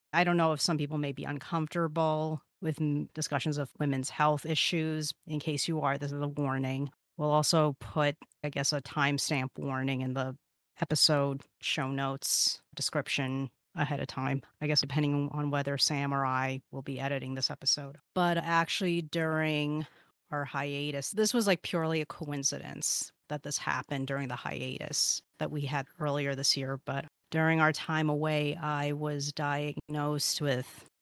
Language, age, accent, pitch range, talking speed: English, 30-49, American, 140-155 Hz, 165 wpm